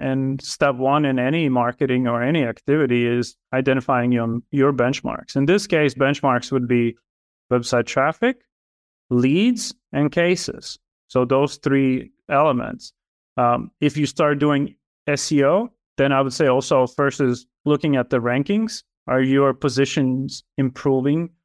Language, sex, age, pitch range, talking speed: English, male, 30-49, 130-160 Hz, 140 wpm